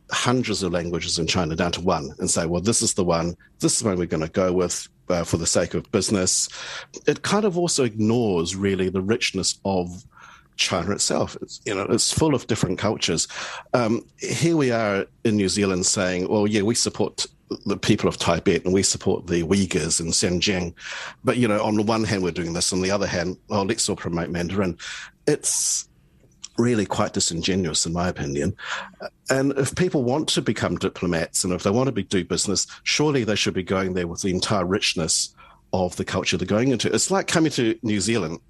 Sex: male